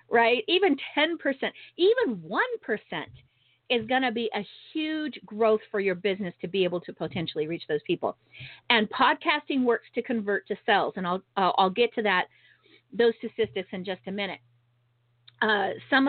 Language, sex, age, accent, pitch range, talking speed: English, female, 40-59, American, 180-245 Hz, 165 wpm